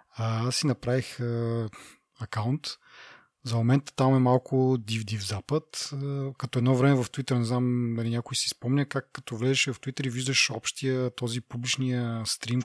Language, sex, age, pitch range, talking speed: Bulgarian, male, 30-49, 115-135 Hz, 155 wpm